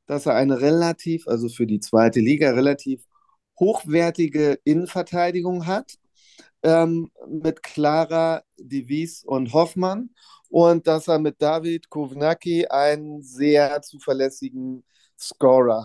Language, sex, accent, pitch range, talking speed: German, male, German, 130-160 Hz, 115 wpm